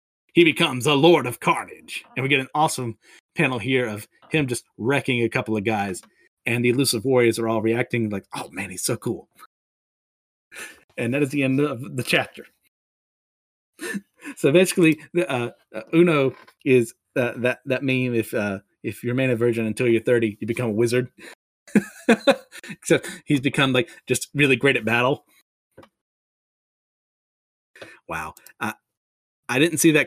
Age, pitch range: 30-49, 115-150 Hz